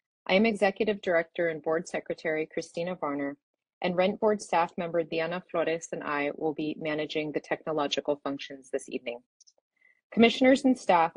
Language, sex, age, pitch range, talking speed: English, female, 30-49, 155-195 Hz, 155 wpm